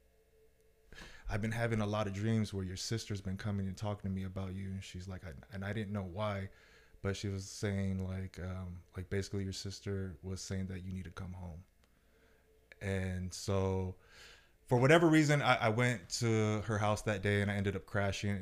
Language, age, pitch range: English, 20-39, 95-110 Hz